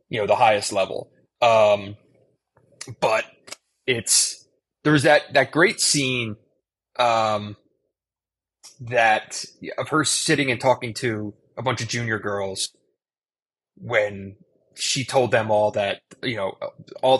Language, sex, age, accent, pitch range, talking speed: English, male, 20-39, American, 105-145 Hz, 125 wpm